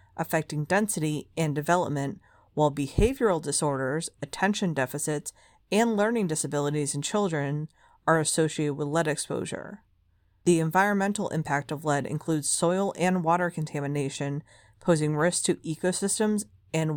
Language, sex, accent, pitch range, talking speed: English, female, American, 150-195 Hz, 120 wpm